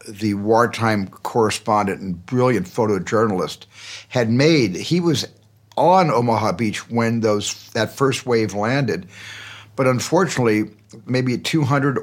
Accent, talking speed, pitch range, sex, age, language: American, 115 wpm, 110-135 Hz, male, 60-79, English